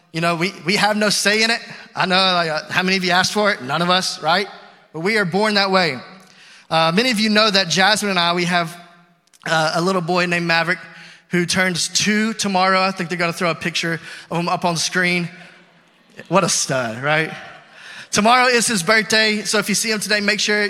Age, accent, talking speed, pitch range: 20-39, American, 230 wpm, 175-225 Hz